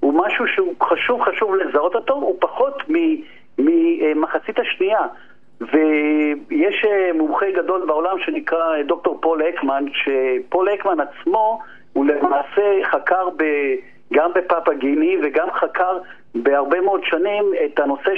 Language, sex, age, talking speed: Hebrew, male, 50-69, 115 wpm